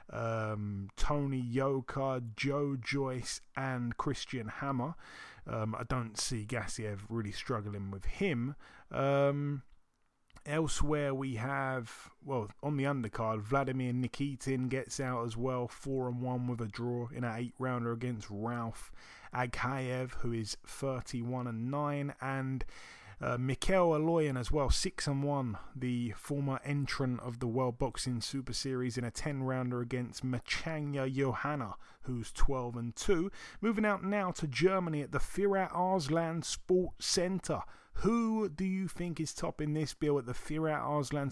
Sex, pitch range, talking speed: male, 120-145 Hz, 140 wpm